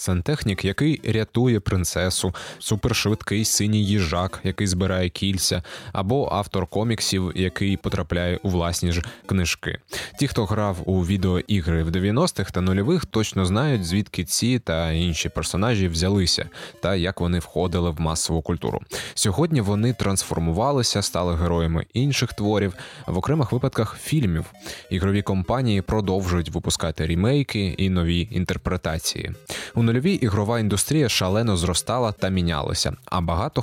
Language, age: Ukrainian, 20-39